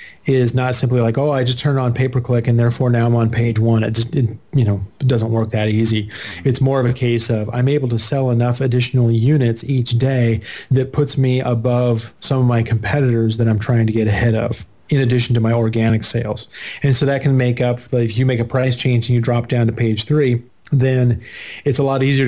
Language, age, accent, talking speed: English, 30-49, American, 230 wpm